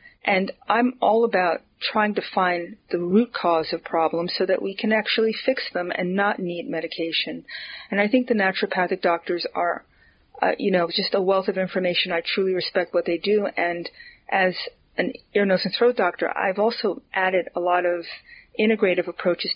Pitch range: 175-205 Hz